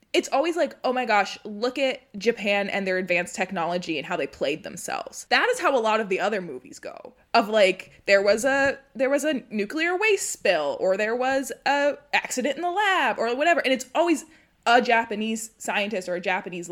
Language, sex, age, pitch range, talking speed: English, female, 20-39, 190-275 Hz, 210 wpm